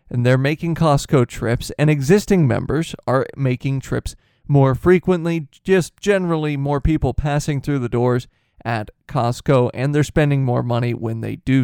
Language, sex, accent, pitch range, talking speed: English, male, American, 125-155 Hz, 160 wpm